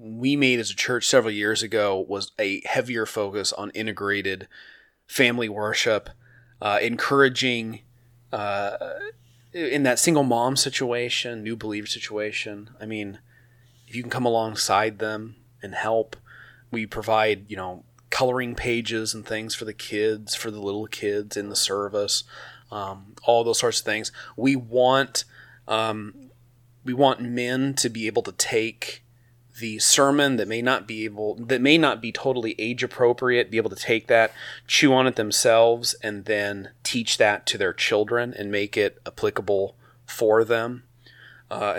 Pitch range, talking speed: 105-125 Hz, 155 wpm